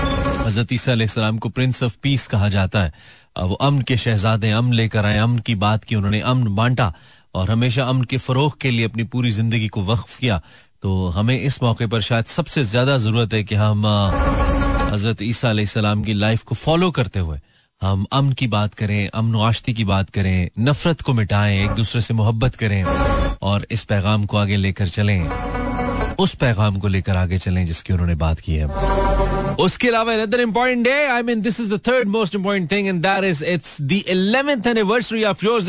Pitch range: 105-175 Hz